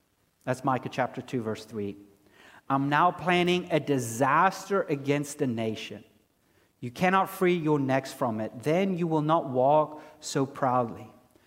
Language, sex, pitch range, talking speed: English, male, 135-205 Hz, 145 wpm